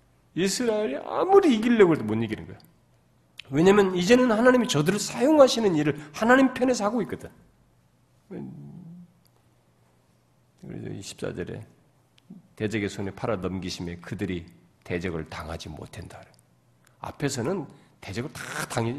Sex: male